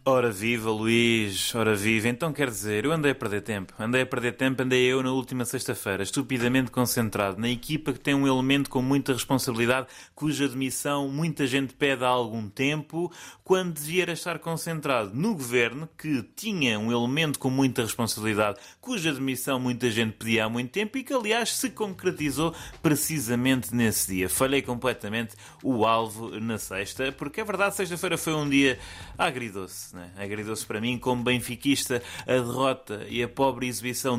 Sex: male